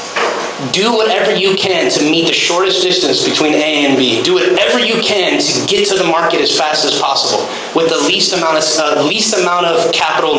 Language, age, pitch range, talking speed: English, 30-49, 165-230 Hz, 200 wpm